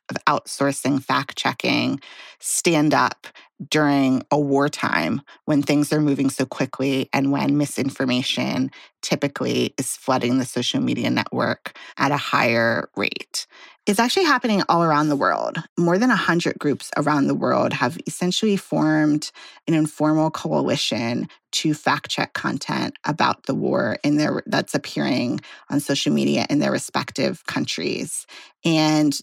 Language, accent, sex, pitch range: English, American, female, 140-185 Hz